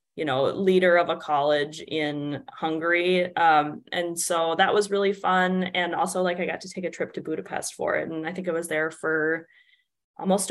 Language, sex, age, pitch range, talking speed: English, female, 20-39, 160-195 Hz, 205 wpm